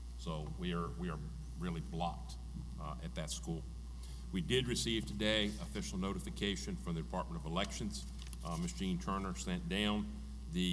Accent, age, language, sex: American, 40-59, English, male